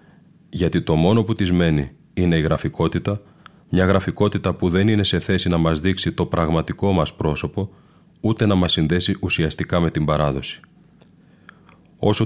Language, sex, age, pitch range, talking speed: Greek, male, 30-49, 85-100 Hz, 155 wpm